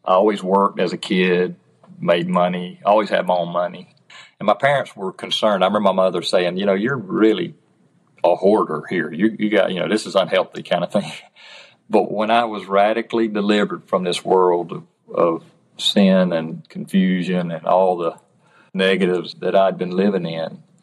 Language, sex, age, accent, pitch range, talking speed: English, male, 40-59, American, 90-110 Hz, 185 wpm